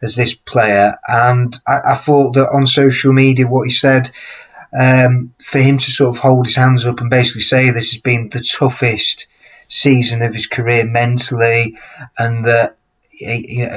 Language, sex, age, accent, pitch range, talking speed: English, male, 30-49, British, 115-130 Hz, 175 wpm